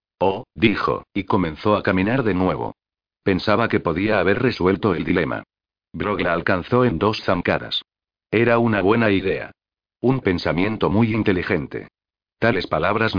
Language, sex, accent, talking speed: Spanish, male, Spanish, 140 wpm